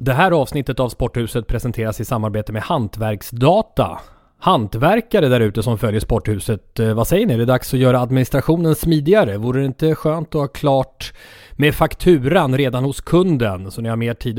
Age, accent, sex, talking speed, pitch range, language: 30-49, Swedish, male, 180 wpm, 115-150 Hz, English